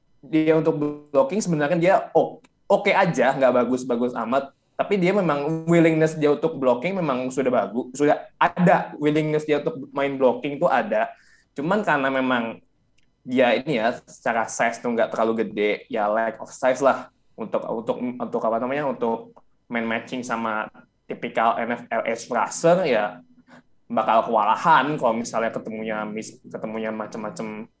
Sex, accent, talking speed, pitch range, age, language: male, native, 150 wpm, 115-150 Hz, 20-39, Indonesian